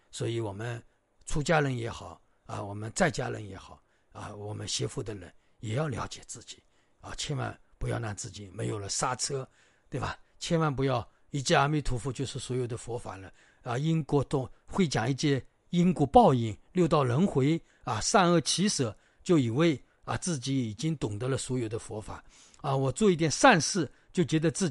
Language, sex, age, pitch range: Chinese, male, 50-69, 110-170 Hz